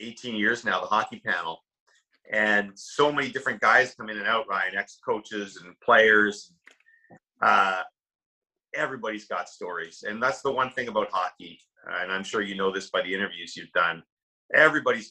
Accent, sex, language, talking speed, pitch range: American, male, English, 165 wpm, 100-135 Hz